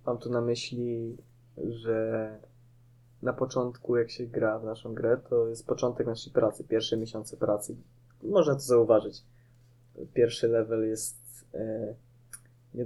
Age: 20-39